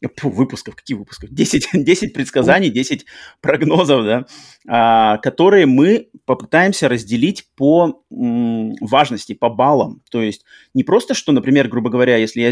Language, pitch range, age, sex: Russian, 115-155 Hz, 30-49, male